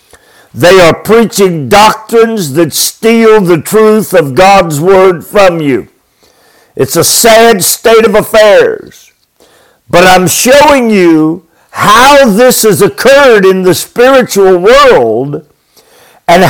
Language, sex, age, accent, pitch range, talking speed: English, male, 50-69, American, 170-235 Hz, 115 wpm